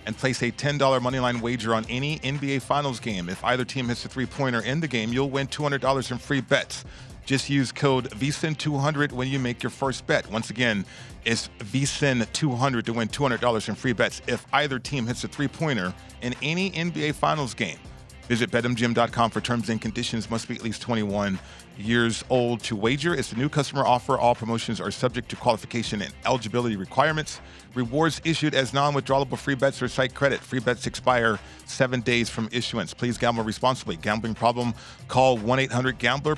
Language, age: English, 40-59